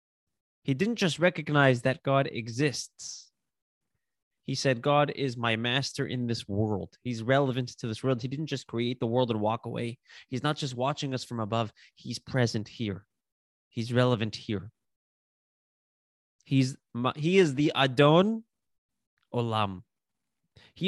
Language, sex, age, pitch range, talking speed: English, male, 20-39, 115-150 Hz, 145 wpm